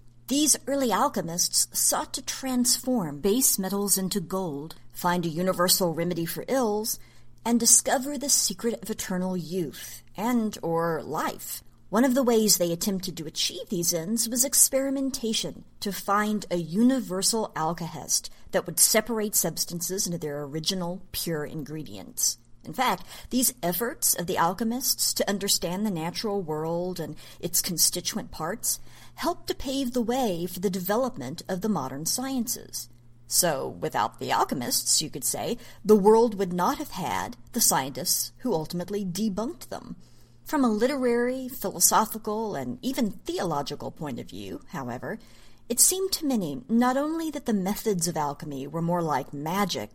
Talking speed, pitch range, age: 150 wpm, 165-235 Hz, 50-69